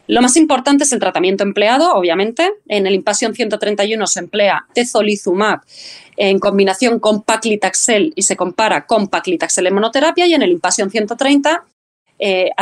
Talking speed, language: 150 wpm, Spanish